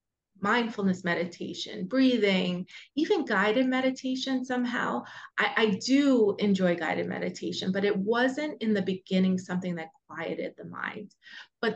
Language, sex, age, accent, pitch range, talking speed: English, female, 30-49, American, 185-230 Hz, 130 wpm